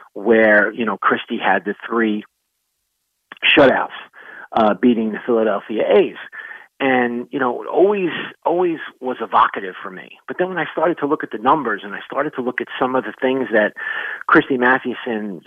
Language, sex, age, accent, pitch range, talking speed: English, male, 40-59, American, 115-150 Hz, 180 wpm